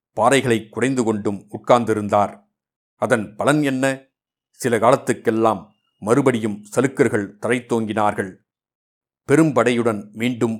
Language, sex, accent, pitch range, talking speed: Tamil, male, native, 105-125 Hz, 80 wpm